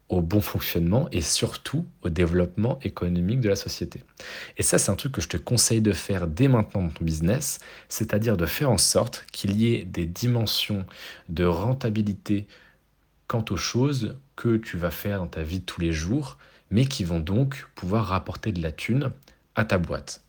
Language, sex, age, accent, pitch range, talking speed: French, male, 40-59, French, 80-110 Hz, 190 wpm